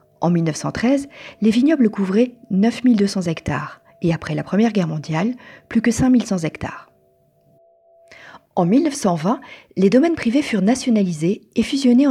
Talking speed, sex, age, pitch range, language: 130 wpm, female, 40-59, 160-240 Hz, French